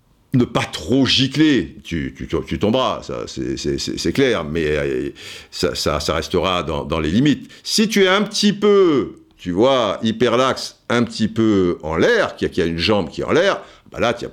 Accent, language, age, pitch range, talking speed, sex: French, French, 60-79, 90-140 Hz, 205 wpm, male